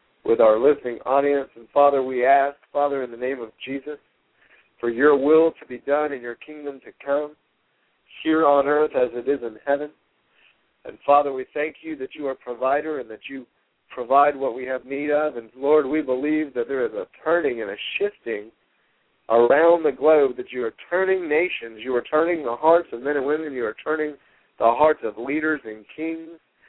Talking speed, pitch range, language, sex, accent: 200 wpm, 130-155 Hz, English, male, American